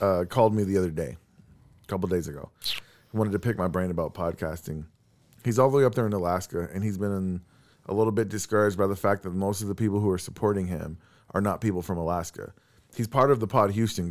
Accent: American